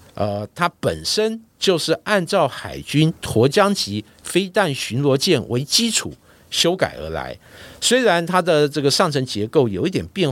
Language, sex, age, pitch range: Chinese, male, 60-79, 115-180 Hz